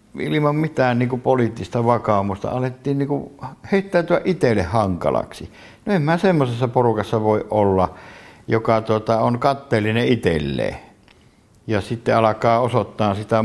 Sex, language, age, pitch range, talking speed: male, Finnish, 60-79, 100-120 Hz, 130 wpm